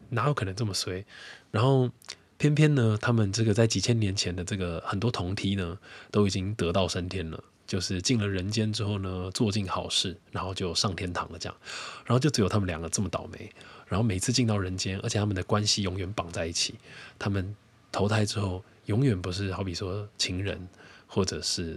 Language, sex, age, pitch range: Chinese, male, 20-39, 90-110 Hz